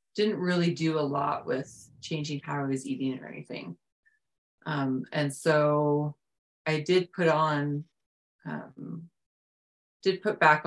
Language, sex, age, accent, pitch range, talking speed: English, female, 30-49, American, 140-160 Hz, 135 wpm